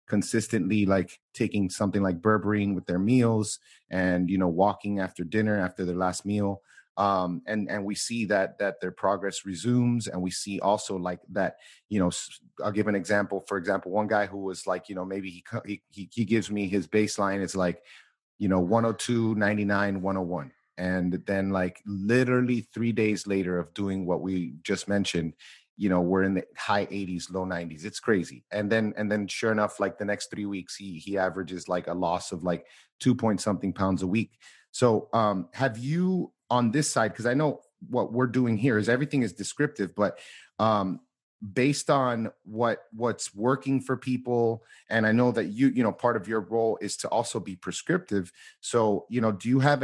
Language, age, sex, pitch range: English, 30-49, male, 95-115 Hz